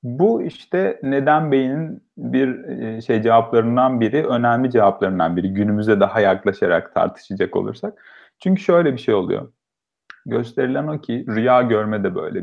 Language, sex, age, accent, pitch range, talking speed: Turkish, male, 40-59, native, 105-135 Hz, 135 wpm